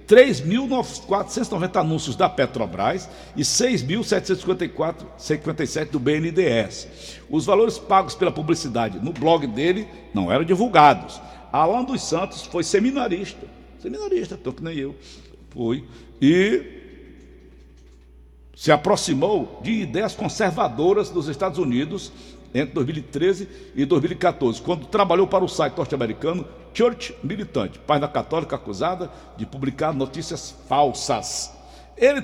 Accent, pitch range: Brazilian, 130-190 Hz